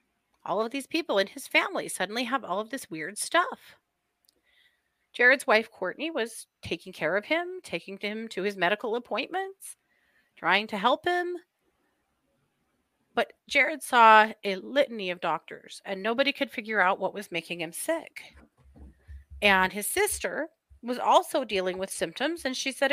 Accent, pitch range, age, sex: American, 195-300 Hz, 30-49, female